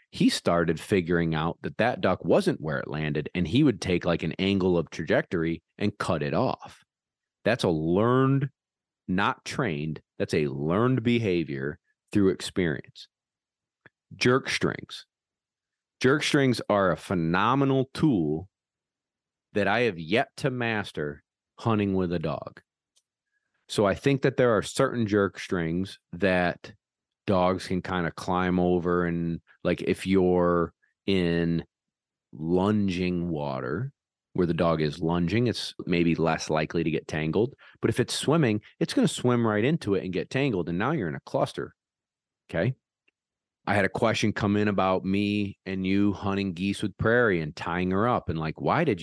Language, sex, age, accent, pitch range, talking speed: English, male, 40-59, American, 85-105 Hz, 160 wpm